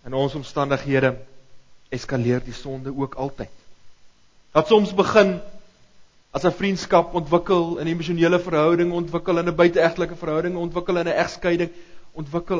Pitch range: 125-180 Hz